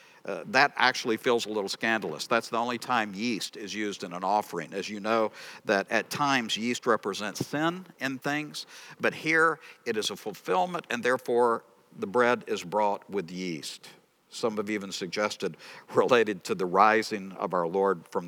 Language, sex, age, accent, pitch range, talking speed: English, male, 60-79, American, 100-135 Hz, 175 wpm